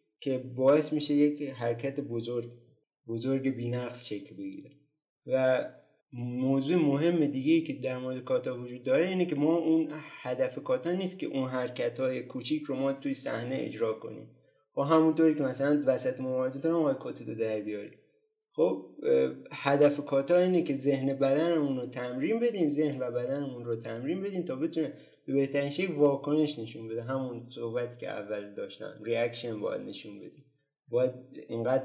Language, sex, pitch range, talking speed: Persian, male, 120-150 Hz, 160 wpm